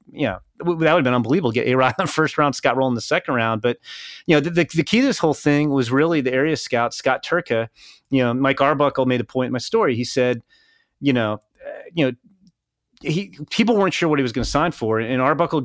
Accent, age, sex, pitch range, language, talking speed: American, 30-49, male, 120-150 Hz, English, 270 wpm